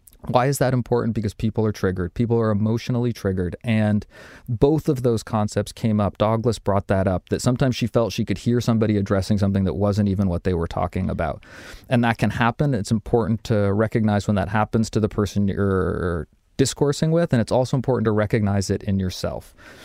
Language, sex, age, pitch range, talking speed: English, male, 20-39, 100-120 Hz, 205 wpm